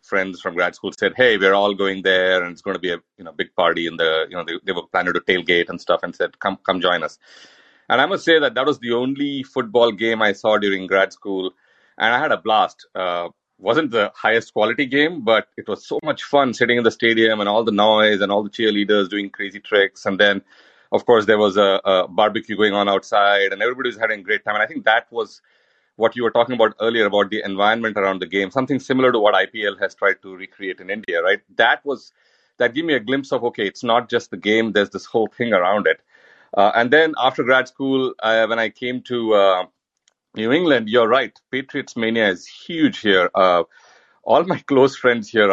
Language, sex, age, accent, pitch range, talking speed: English, male, 30-49, Indian, 100-125 Hz, 240 wpm